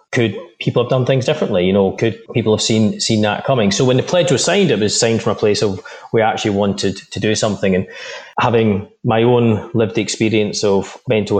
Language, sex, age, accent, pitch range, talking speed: English, male, 20-39, British, 100-120 Hz, 220 wpm